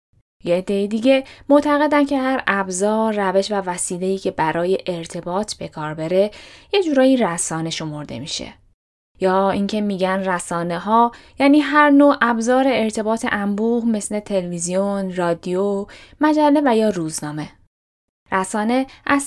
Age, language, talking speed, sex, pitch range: 10-29, Persian, 120 wpm, female, 185-255 Hz